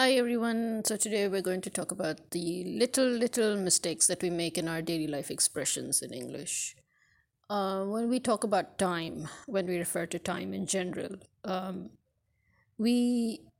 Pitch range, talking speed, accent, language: 170-210 Hz, 170 wpm, Indian, English